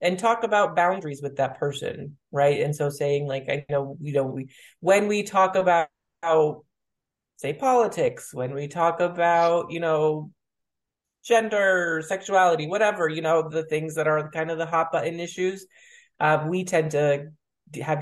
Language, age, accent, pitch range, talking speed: English, 20-39, American, 150-190 Hz, 160 wpm